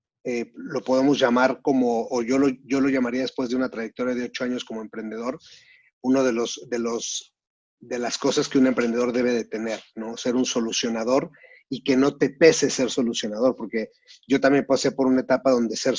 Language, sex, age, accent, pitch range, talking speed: Spanish, male, 30-49, Mexican, 120-145 Hz, 205 wpm